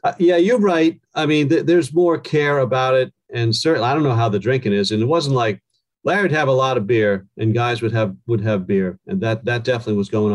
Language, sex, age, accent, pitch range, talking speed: English, male, 40-59, American, 115-150 Hz, 255 wpm